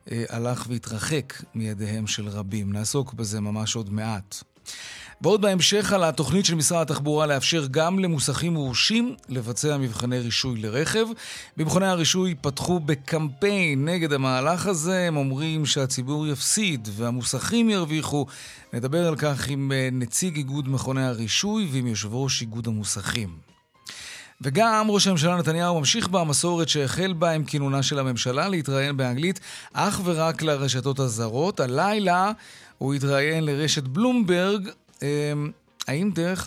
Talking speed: 125 wpm